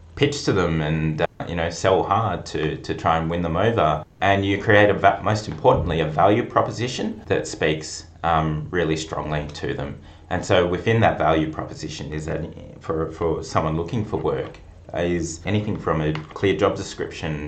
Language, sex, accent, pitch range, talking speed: English, male, Australian, 75-90 Hz, 185 wpm